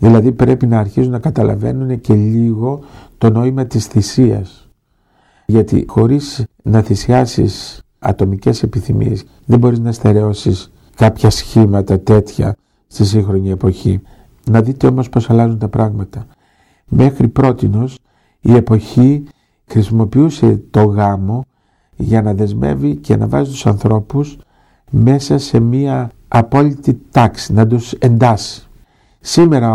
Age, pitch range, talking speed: 50-69, 105-130 Hz, 120 wpm